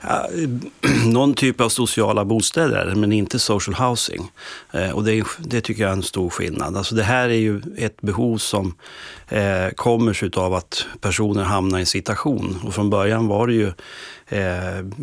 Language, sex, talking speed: Swedish, male, 170 wpm